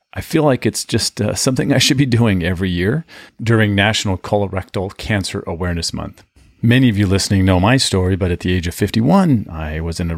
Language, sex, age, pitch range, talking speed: English, male, 40-59, 85-110 Hz, 210 wpm